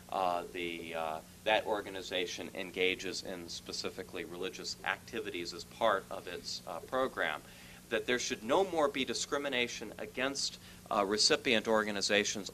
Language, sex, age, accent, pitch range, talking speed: English, male, 40-59, American, 85-125 Hz, 125 wpm